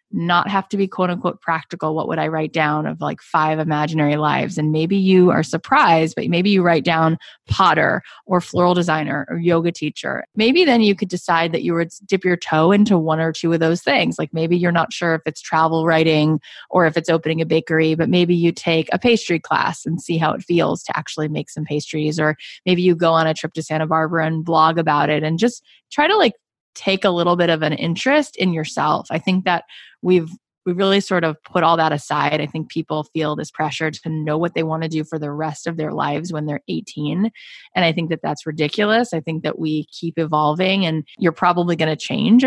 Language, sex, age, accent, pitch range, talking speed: English, female, 20-39, American, 155-180 Hz, 230 wpm